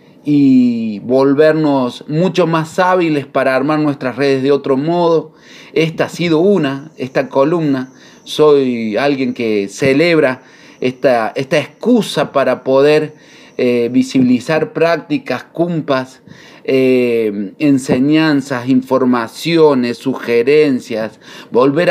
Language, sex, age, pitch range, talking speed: Spanish, male, 30-49, 135-160 Hz, 95 wpm